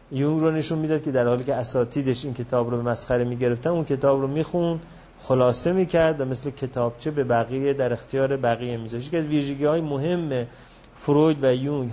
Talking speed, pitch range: 190 wpm, 125-165 Hz